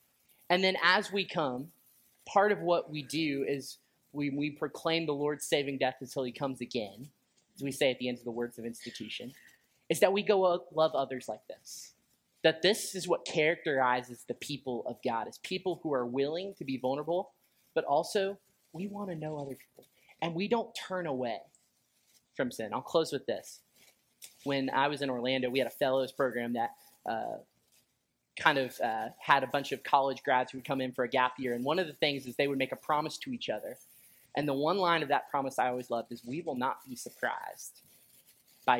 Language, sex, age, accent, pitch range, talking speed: English, male, 20-39, American, 125-165 Hz, 215 wpm